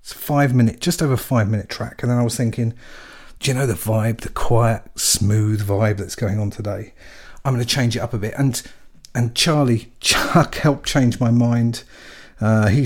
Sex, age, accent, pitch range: male, 50-69, British, 100-120 Hz